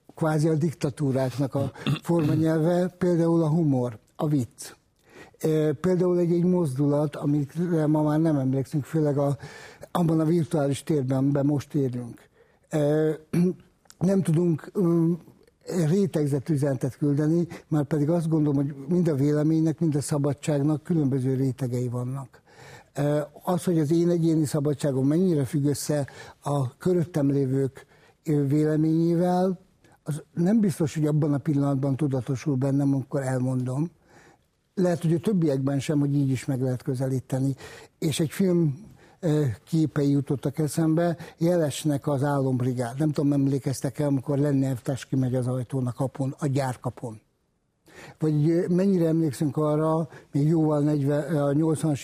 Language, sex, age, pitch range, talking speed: Hungarian, male, 60-79, 140-160 Hz, 130 wpm